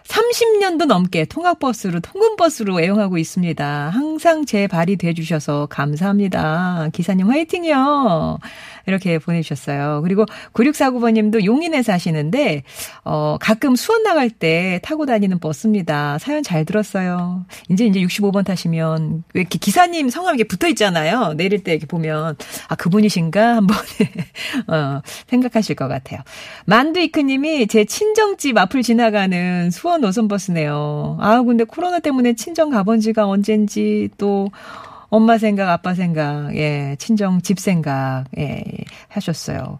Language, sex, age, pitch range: Korean, female, 40-59, 165-230 Hz